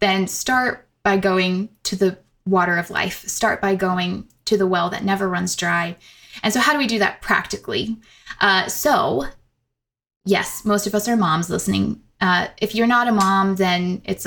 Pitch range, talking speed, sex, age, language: 185-210 Hz, 185 wpm, female, 20-39, English